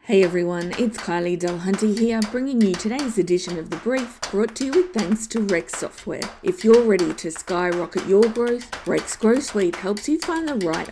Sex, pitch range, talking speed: female, 180-235 Hz, 200 wpm